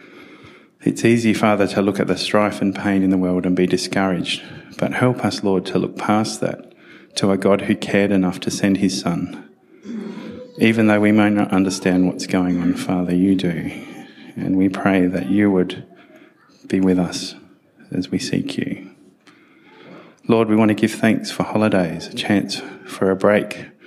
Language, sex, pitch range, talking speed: English, male, 90-105 Hz, 180 wpm